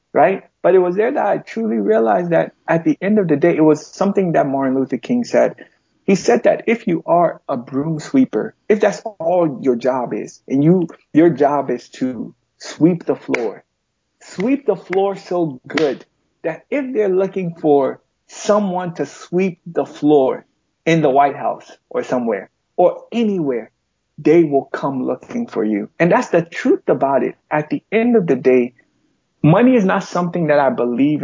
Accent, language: American, English